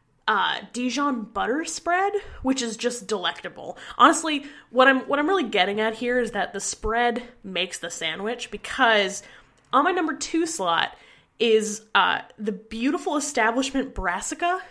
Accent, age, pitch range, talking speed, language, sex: American, 20-39, 205-285 Hz, 145 wpm, English, female